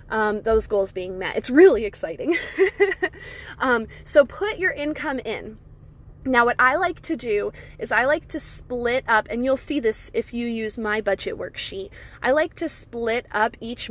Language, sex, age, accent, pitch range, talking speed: English, female, 20-39, American, 215-280 Hz, 180 wpm